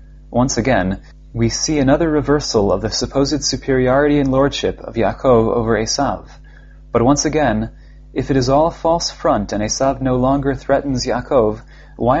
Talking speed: 160 wpm